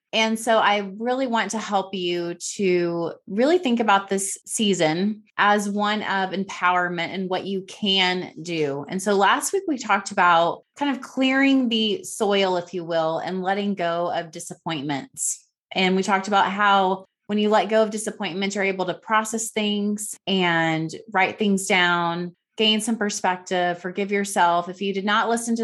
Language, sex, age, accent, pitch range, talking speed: English, female, 20-39, American, 180-220 Hz, 175 wpm